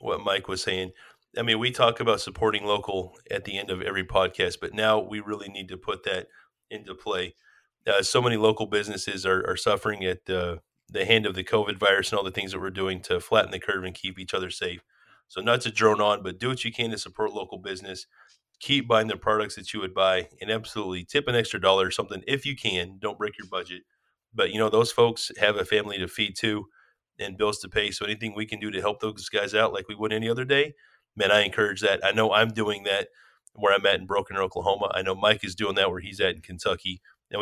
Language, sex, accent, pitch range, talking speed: English, male, American, 95-115 Hz, 245 wpm